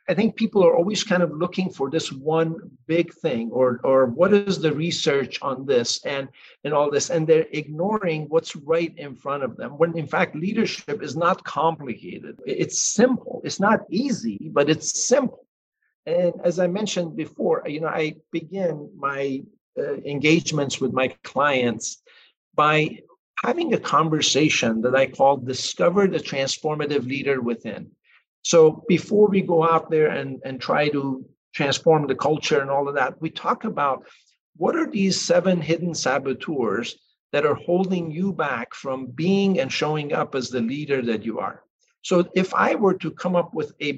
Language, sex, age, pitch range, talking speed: English, male, 50-69, 140-185 Hz, 175 wpm